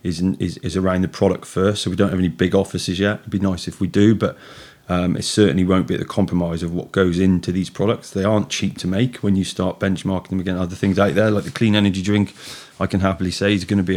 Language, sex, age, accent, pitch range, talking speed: English, male, 30-49, British, 90-100 Hz, 275 wpm